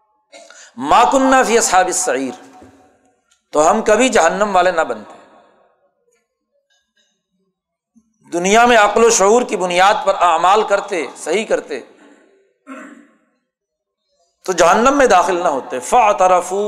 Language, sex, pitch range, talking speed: Urdu, male, 185-250 Hz, 110 wpm